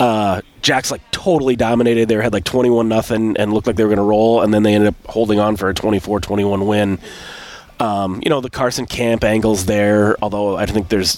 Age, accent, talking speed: 30-49, American, 220 wpm